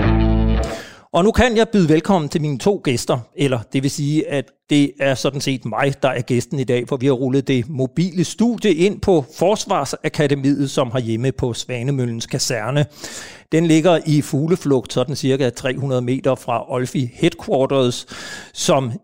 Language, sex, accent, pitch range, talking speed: Danish, male, native, 130-165 Hz, 165 wpm